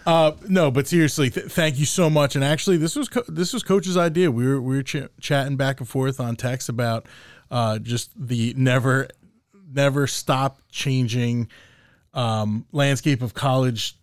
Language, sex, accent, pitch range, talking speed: English, male, American, 115-140 Hz, 175 wpm